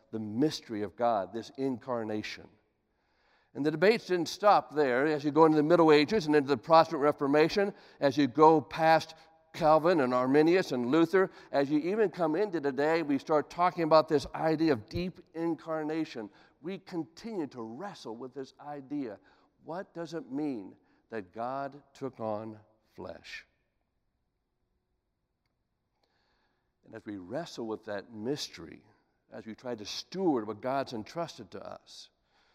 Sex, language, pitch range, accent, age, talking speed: male, English, 110-160 Hz, American, 60-79, 150 wpm